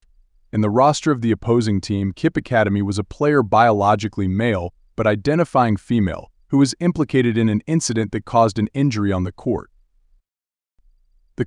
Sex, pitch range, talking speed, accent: male, 100-125 Hz, 160 wpm, American